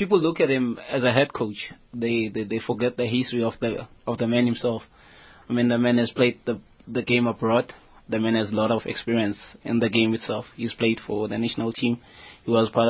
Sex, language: male, English